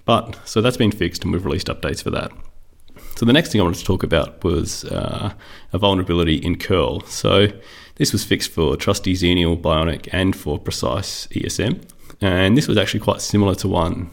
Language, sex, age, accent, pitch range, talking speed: English, male, 30-49, Australian, 85-100 Hz, 195 wpm